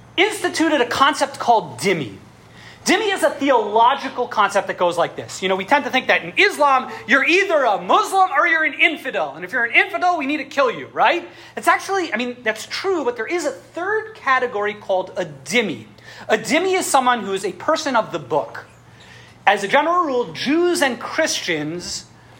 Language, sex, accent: English, male, American